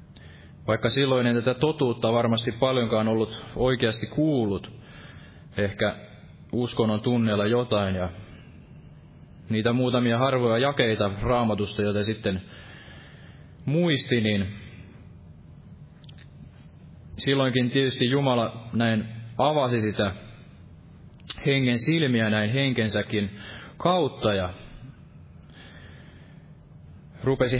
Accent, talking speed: native, 80 wpm